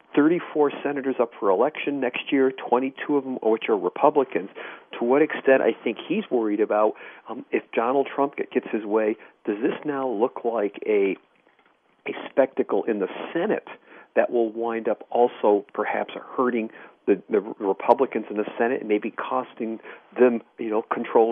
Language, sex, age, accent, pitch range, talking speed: English, male, 40-59, American, 115-140 Hz, 165 wpm